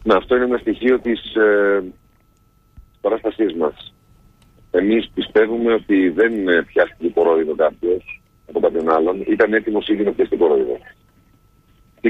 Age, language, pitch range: 50-69, Greek, 100-145 Hz